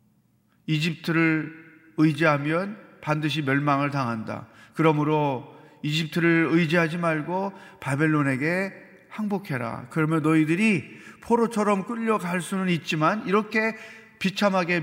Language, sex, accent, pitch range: Korean, male, native, 155-210 Hz